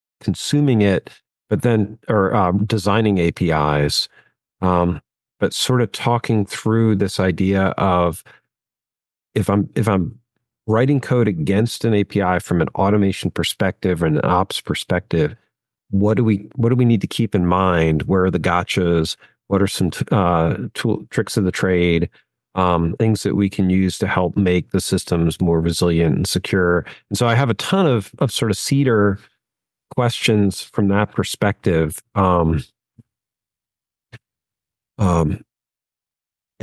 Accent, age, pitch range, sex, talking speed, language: American, 40-59, 95-115 Hz, male, 150 wpm, English